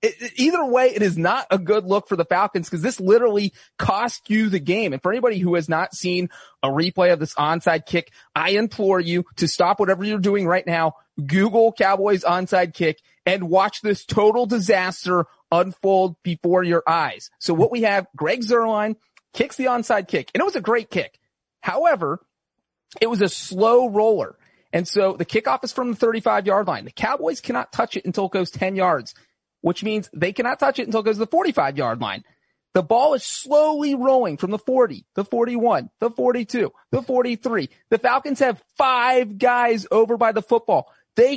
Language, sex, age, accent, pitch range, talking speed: English, male, 30-49, American, 180-240 Hz, 190 wpm